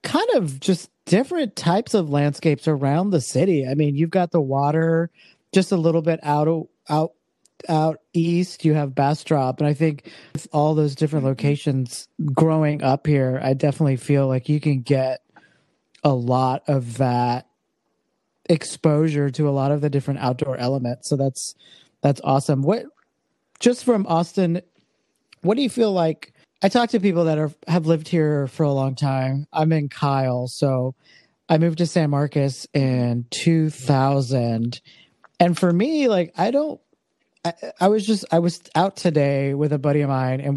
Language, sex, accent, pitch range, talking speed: English, male, American, 135-170 Hz, 170 wpm